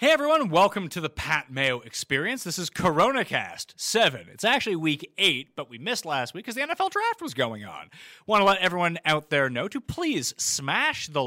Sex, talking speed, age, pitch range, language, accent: male, 210 wpm, 30-49, 130-200 Hz, English, American